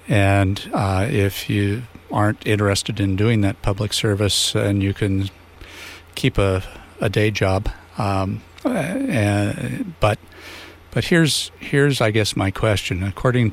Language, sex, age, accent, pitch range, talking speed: English, male, 60-79, American, 85-110 Hz, 135 wpm